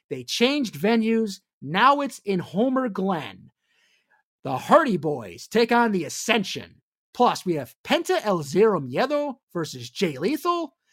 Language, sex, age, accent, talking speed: English, male, 30-49, American, 135 wpm